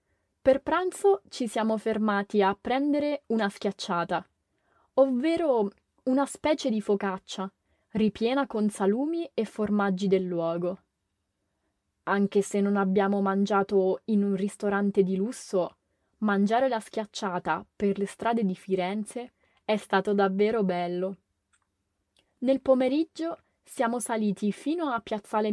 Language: English